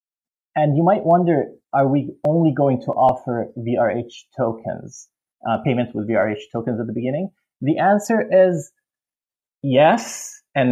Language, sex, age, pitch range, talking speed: English, male, 20-39, 115-150 Hz, 140 wpm